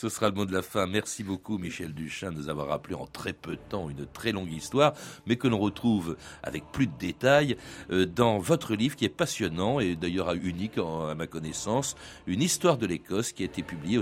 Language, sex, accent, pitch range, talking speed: French, male, French, 90-125 Hz, 225 wpm